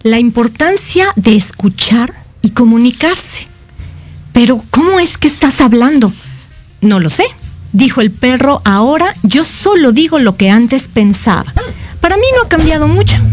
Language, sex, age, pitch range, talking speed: Spanish, female, 40-59, 205-295 Hz, 145 wpm